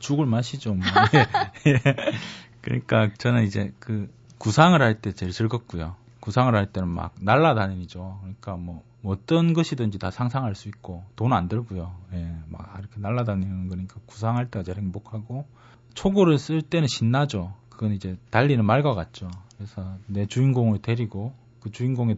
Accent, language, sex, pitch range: native, Korean, male, 105-140 Hz